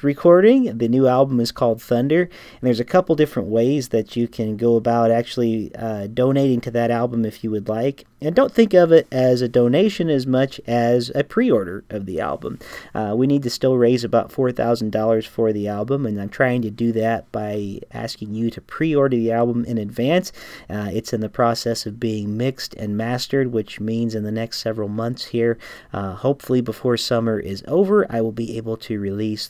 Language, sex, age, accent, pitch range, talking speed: English, male, 40-59, American, 110-130 Hz, 205 wpm